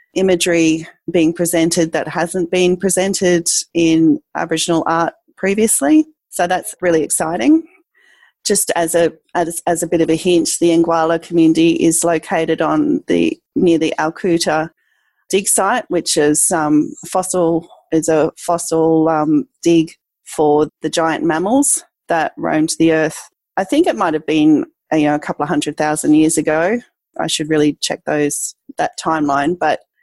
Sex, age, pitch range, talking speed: female, 30-49, 155-185 Hz, 155 wpm